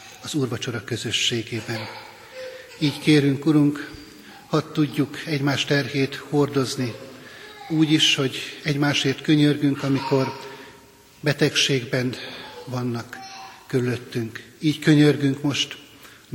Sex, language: male, Hungarian